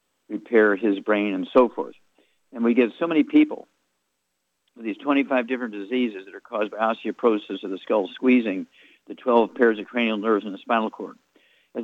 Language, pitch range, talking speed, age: English, 115-140 Hz, 190 wpm, 50-69